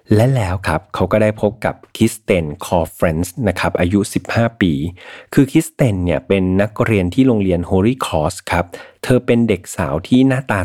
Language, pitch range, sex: Thai, 90-115 Hz, male